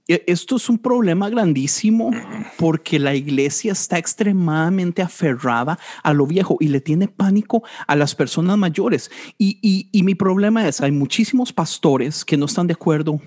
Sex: male